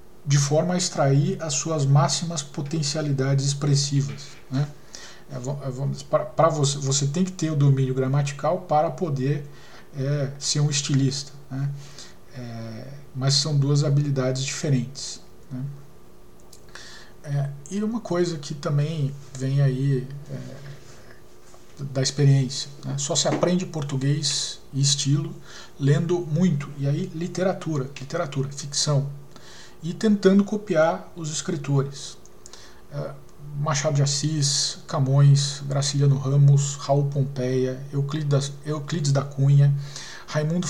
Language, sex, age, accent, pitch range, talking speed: Portuguese, male, 40-59, Brazilian, 140-160 Hz, 115 wpm